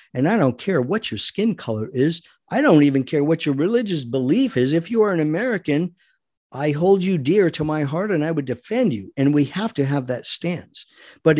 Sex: male